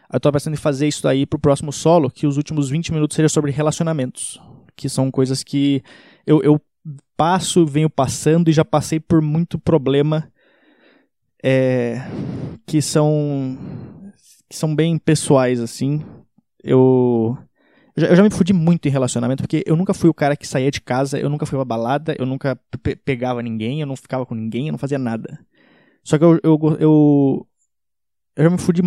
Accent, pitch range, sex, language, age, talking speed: Brazilian, 130-155 Hz, male, Portuguese, 20-39, 180 wpm